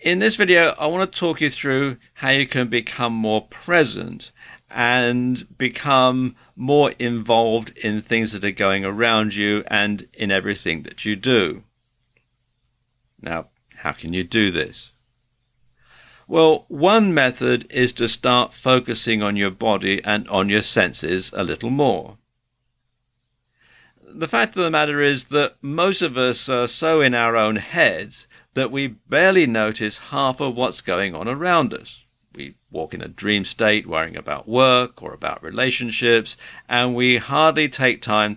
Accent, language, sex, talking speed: British, English, male, 155 wpm